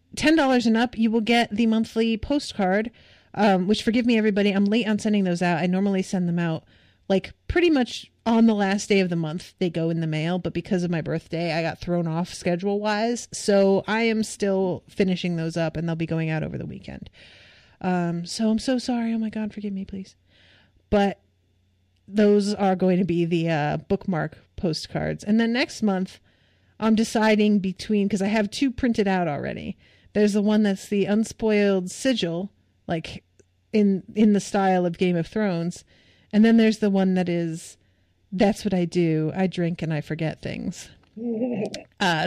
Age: 40-59